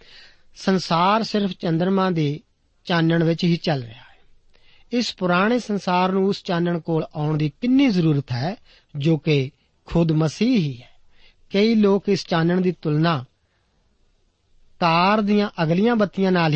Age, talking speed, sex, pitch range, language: 40-59, 140 wpm, male, 150-190 Hz, Punjabi